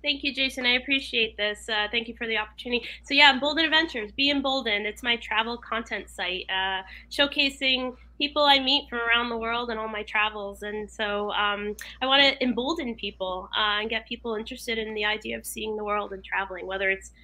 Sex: female